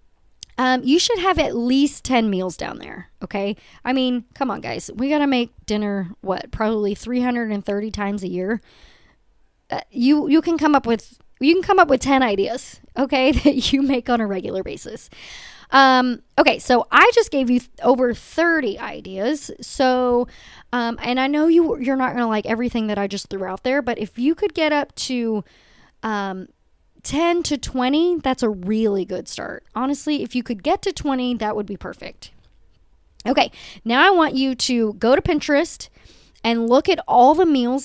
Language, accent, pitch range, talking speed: English, American, 205-280 Hz, 190 wpm